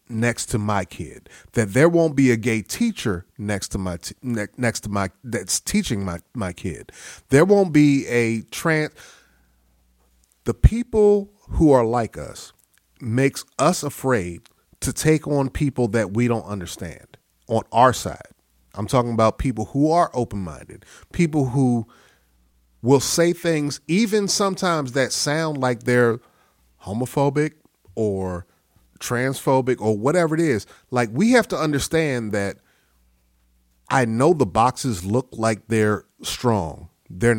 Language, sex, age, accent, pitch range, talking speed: English, male, 30-49, American, 105-165 Hz, 140 wpm